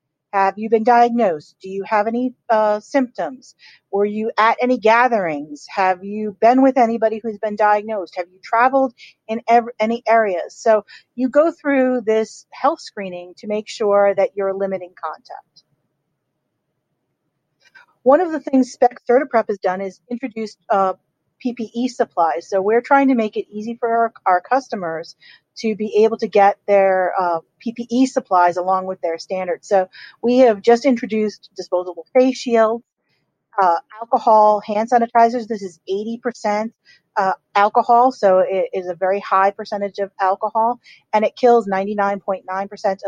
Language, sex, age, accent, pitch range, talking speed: English, female, 40-59, American, 195-240 Hz, 150 wpm